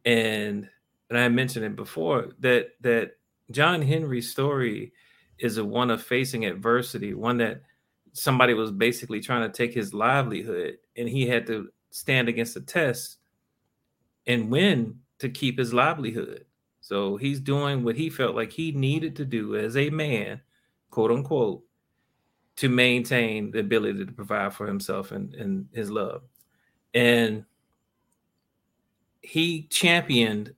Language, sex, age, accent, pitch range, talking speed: English, male, 30-49, American, 115-130 Hz, 140 wpm